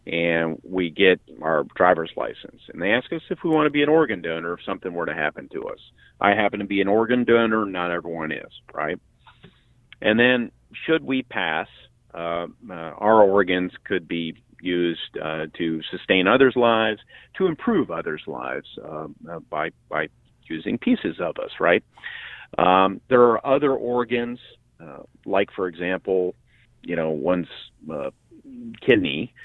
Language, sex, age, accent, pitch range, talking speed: English, male, 40-59, American, 85-120 Hz, 165 wpm